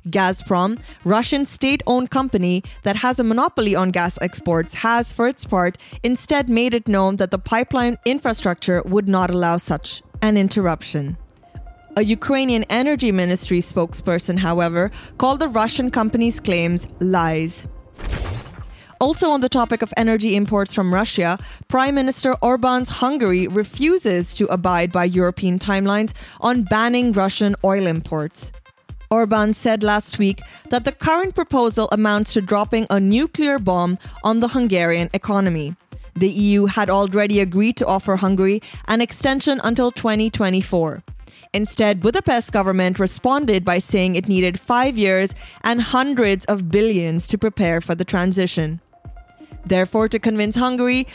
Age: 20-39